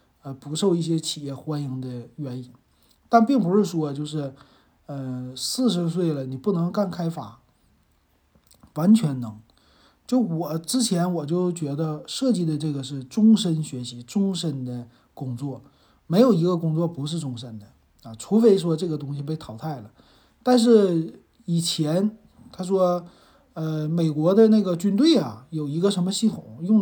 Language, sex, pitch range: Chinese, male, 140-200 Hz